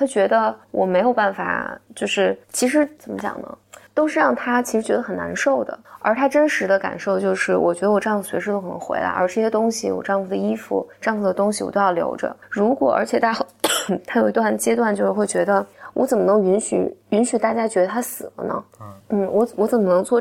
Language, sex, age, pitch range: Chinese, female, 20-39, 195-245 Hz